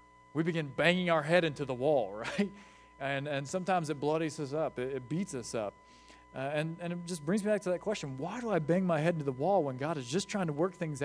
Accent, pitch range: American, 135-175 Hz